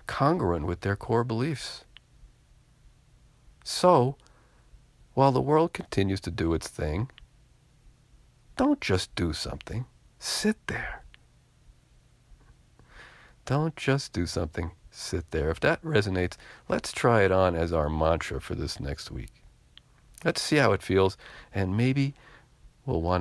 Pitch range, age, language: 85-125 Hz, 50-69, English